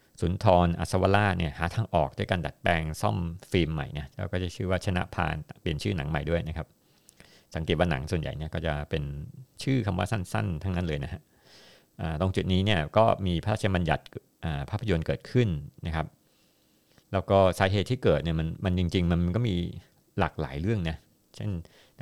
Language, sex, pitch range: Thai, male, 80-100 Hz